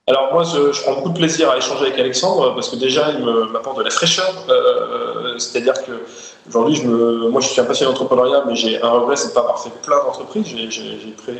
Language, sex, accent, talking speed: French, male, French, 270 wpm